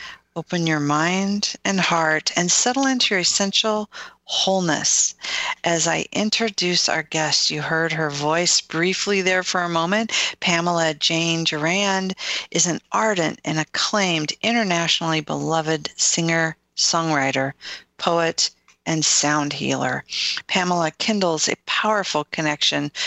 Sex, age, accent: female, 40-59, American